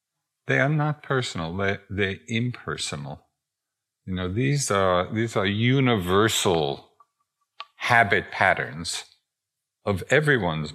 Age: 50-69